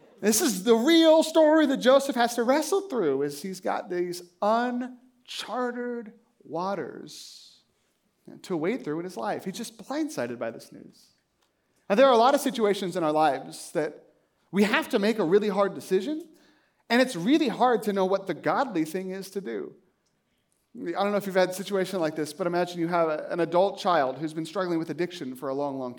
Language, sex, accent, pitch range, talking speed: English, male, American, 190-270 Hz, 200 wpm